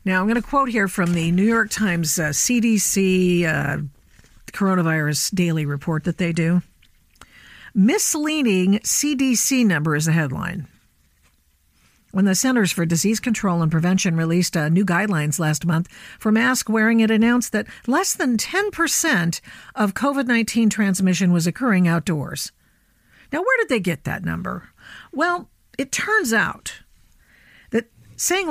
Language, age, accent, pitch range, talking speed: English, 50-69, American, 165-230 Hz, 140 wpm